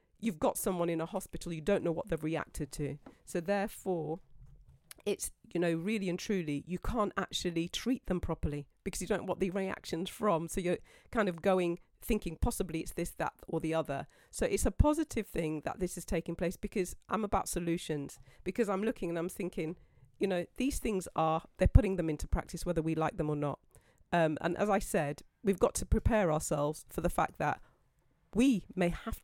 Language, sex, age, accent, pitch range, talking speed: English, female, 40-59, British, 160-200 Hz, 205 wpm